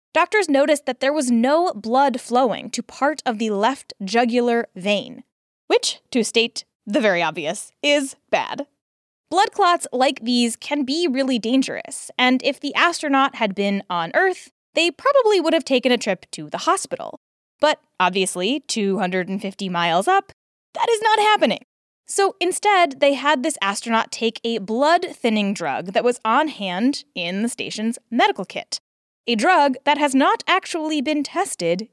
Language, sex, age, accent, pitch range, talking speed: English, female, 10-29, American, 235-330 Hz, 160 wpm